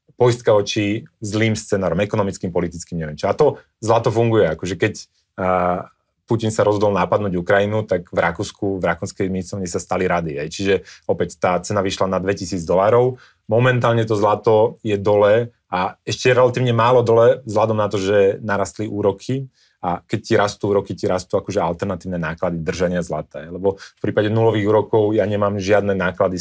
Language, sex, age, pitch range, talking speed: Slovak, male, 30-49, 95-110 Hz, 170 wpm